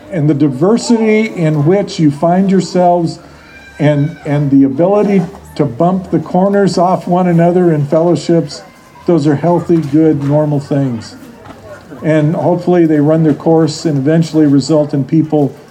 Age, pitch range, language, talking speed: 50-69, 150-185 Hz, English, 145 wpm